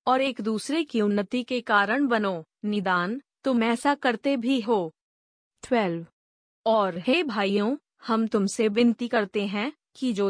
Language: Hindi